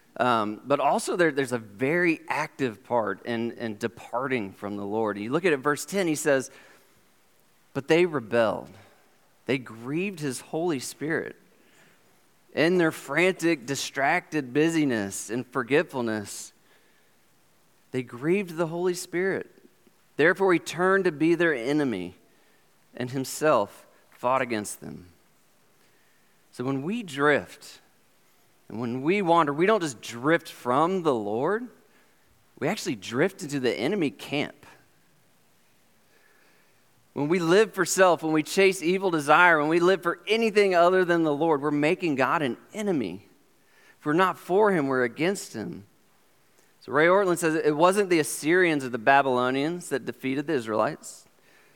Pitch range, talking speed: 125-175 Hz, 140 wpm